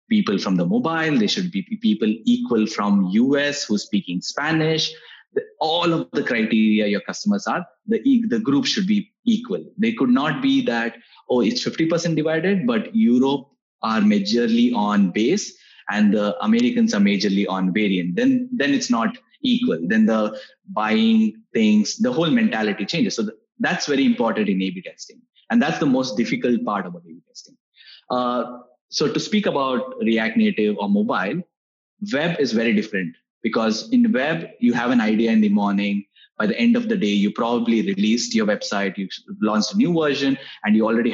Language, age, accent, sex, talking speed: English, 20-39, Indian, male, 180 wpm